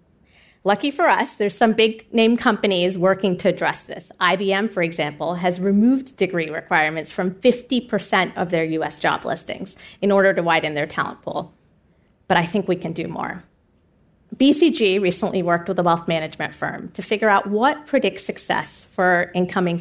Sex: female